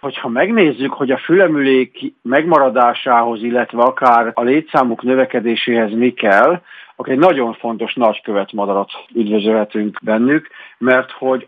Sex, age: male, 50-69